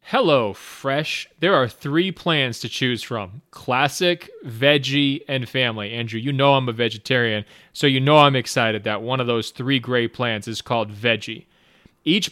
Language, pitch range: English, 120-145 Hz